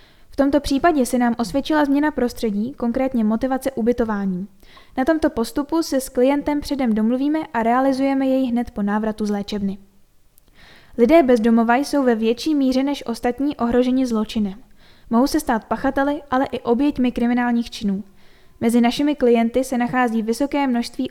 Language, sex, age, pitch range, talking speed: Czech, female, 10-29, 235-275 Hz, 150 wpm